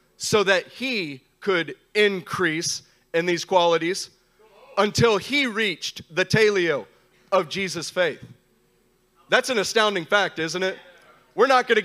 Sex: male